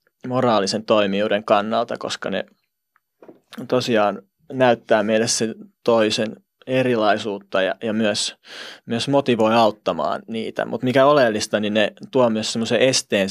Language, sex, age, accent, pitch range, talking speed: Finnish, male, 20-39, native, 110-130 Hz, 115 wpm